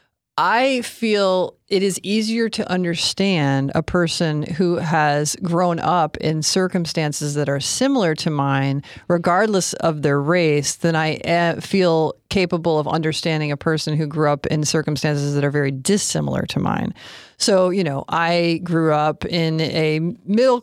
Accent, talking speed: American, 150 wpm